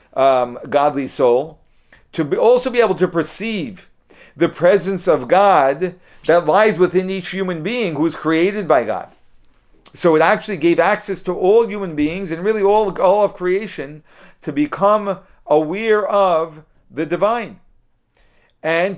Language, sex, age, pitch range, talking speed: English, male, 50-69, 150-195 Hz, 150 wpm